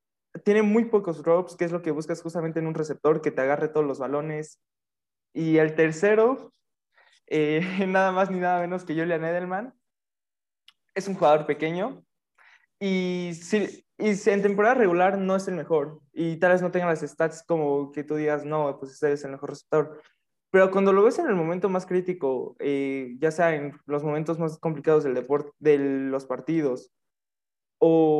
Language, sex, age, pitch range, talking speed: Spanish, male, 20-39, 150-180 Hz, 185 wpm